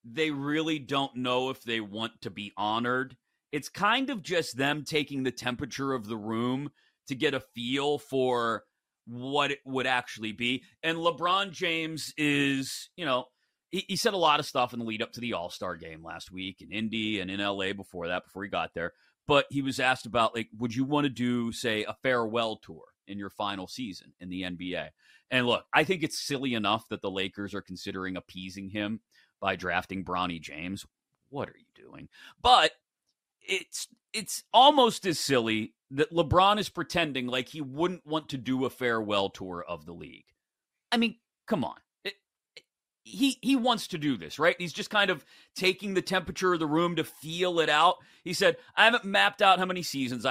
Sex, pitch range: male, 110-165 Hz